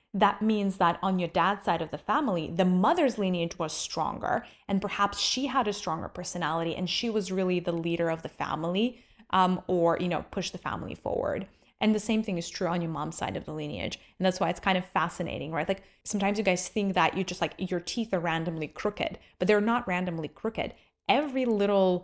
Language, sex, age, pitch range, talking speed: English, female, 20-39, 170-205 Hz, 220 wpm